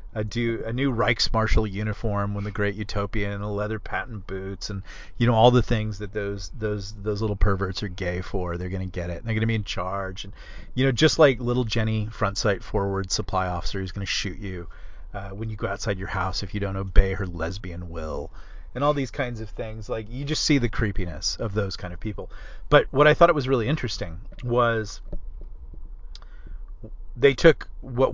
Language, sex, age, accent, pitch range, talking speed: English, male, 30-49, American, 100-125 Hz, 215 wpm